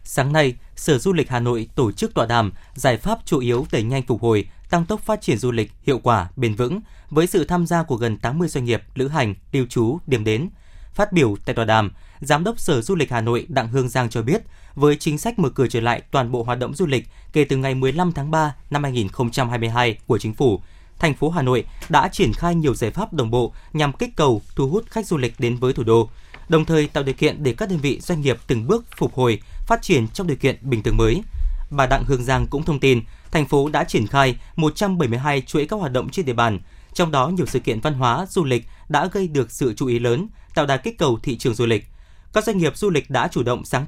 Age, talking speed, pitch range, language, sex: 20-39, 255 wpm, 120-165 Hz, Vietnamese, male